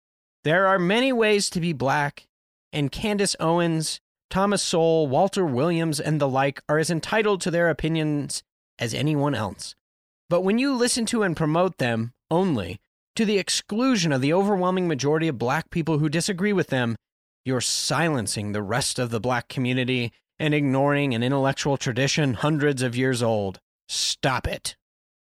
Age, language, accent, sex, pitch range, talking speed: 30-49, English, American, male, 140-200 Hz, 160 wpm